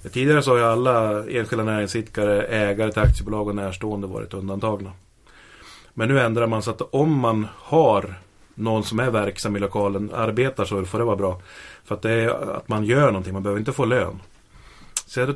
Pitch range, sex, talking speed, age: 100-120 Hz, male, 195 wpm, 30-49